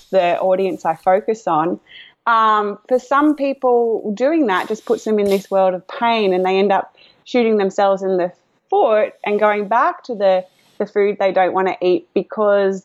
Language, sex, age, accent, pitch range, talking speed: English, female, 20-39, Australian, 185-235 Hz, 190 wpm